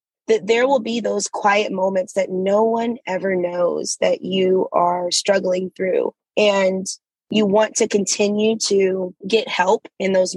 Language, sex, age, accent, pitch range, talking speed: English, female, 20-39, American, 185-215 Hz, 155 wpm